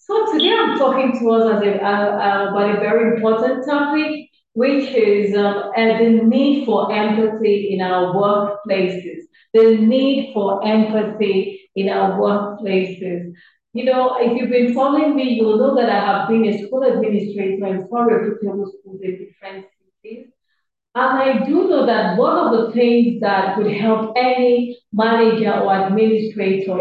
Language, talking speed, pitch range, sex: English, 155 wpm, 200-240 Hz, female